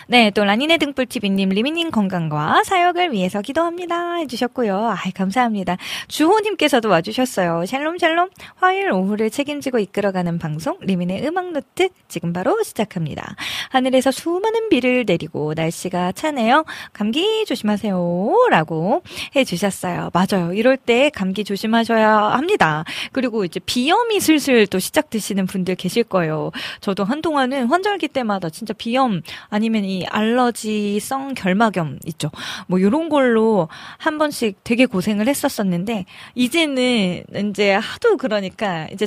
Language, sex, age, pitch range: Korean, female, 20-39, 180-260 Hz